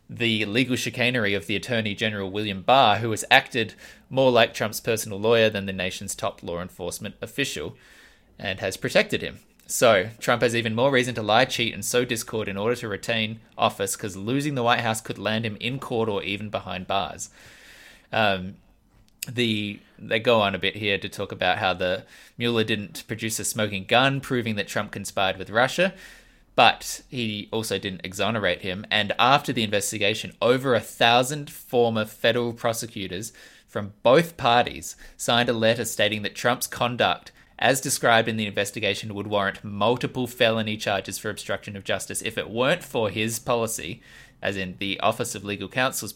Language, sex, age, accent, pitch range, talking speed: English, male, 20-39, Australian, 100-120 Hz, 180 wpm